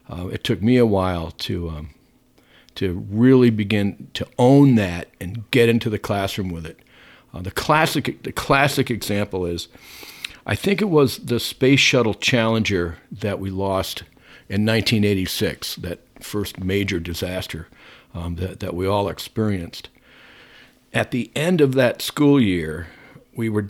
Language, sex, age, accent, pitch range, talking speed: English, male, 50-69, American, 95-120 Hz, 150 wpm